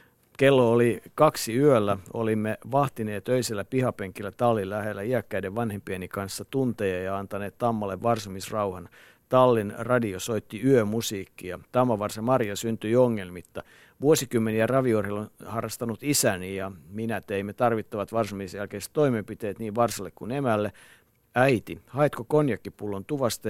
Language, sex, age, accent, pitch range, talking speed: Finnish, male, 50-69, native, 100-120 Hz, 115 wpm